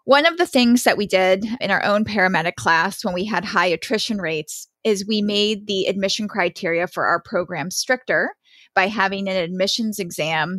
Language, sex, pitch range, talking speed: English, female, 185-225 Hz, 185 wpm